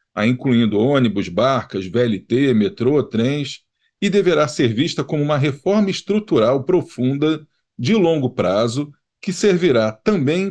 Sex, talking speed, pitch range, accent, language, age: male, 120 wpm, 125-170 Hz, Brazilian, Portuguese, 40-59